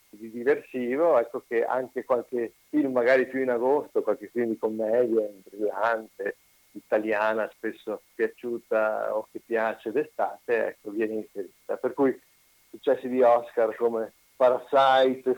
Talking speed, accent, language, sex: 130 wpm, native, Italian, male